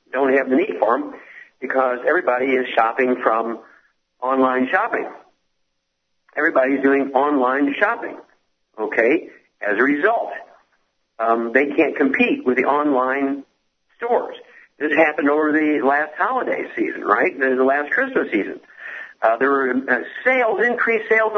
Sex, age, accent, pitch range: male, 60-79, American, 130-220 Hz